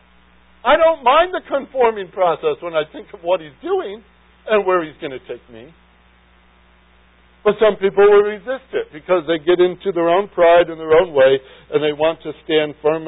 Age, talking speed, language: 60-79, 195 wpm, English